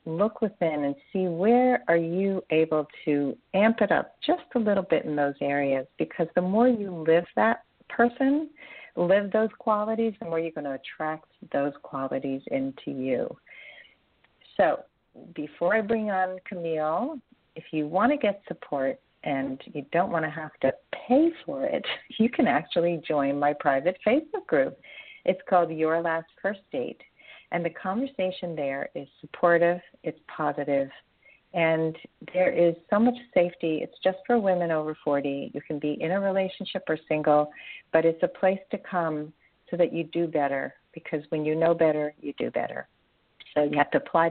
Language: English